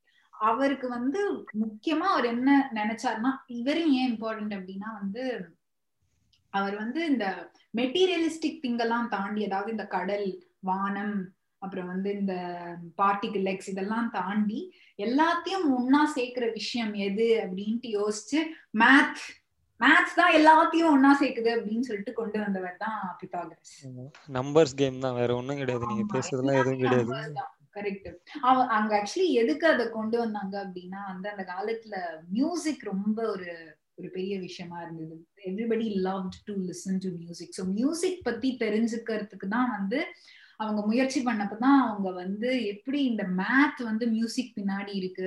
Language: Tamil